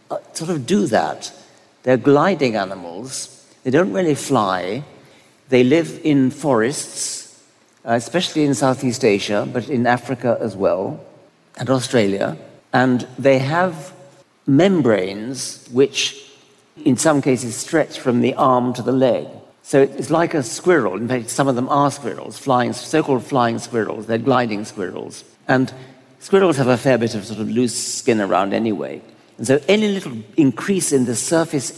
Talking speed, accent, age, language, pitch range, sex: 155 wpm, British, 60-79, English, 120-145 Hz, male